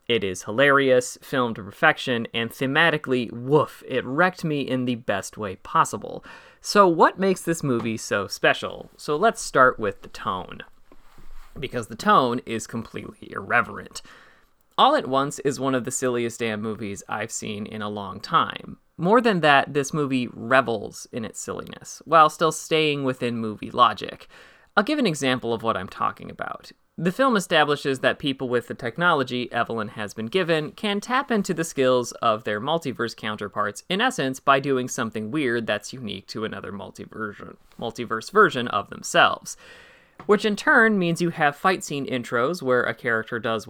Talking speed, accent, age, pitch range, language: 170 wpm, American, 30-49, 115-160 Hz, English